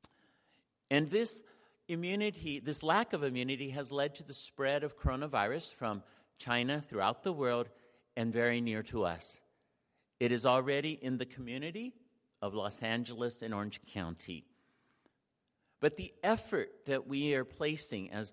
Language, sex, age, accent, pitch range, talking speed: English, male, 50-69, American, 100-140 Hz, 145 wpm